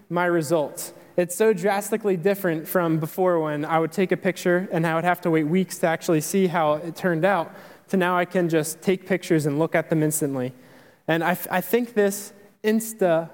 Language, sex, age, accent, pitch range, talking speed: English, male, 20-39, American, 160-185 Hz, 205 wpm